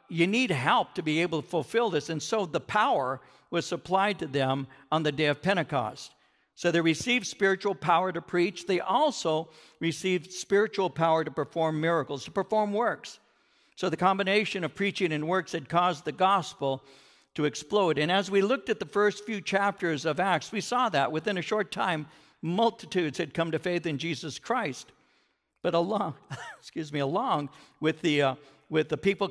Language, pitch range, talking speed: English, 155-195 Hz, 185 wpm